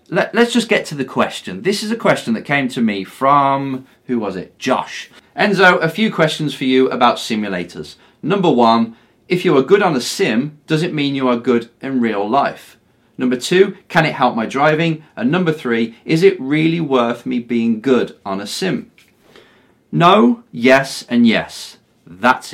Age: 30-49